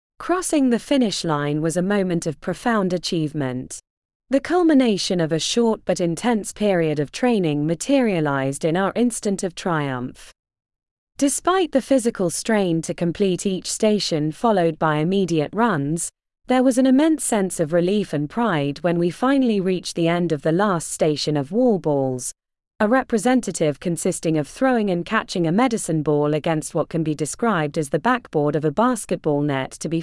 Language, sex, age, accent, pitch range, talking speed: English, female, 30-49, British, 155-235 Hz, 170 wpm